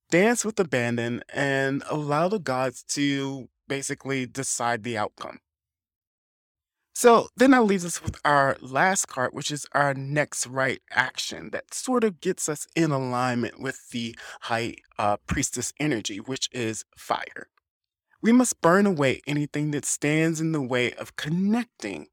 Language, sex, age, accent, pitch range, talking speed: English, male, 20-39, American, 125-160 Hz, 150 wpm